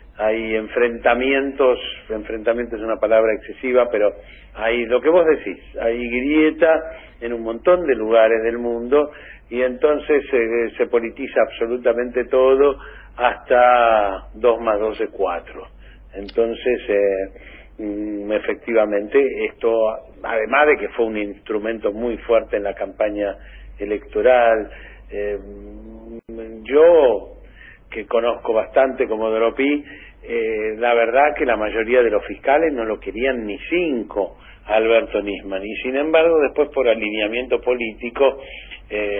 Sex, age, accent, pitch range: male, 50-69, Argentinian, 110-140 Hz